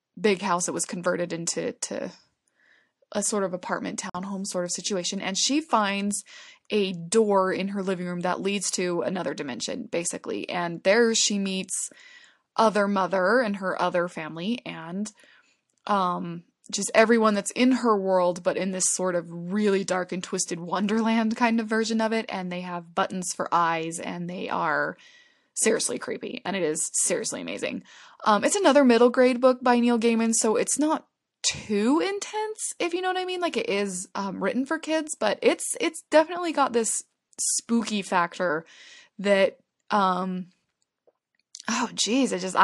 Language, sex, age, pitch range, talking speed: English, female, 20-39, 185-250 Hz, 170 wpm